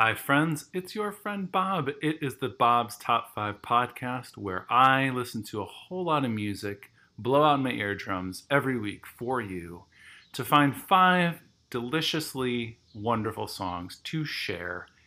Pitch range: 100-135 Hz